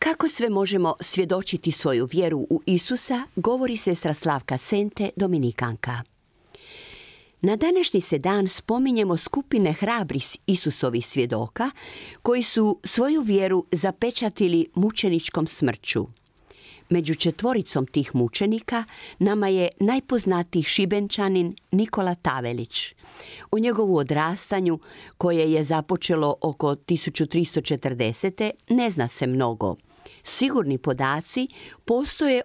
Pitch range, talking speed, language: 150-215 Hz, 100 wpm, Croatian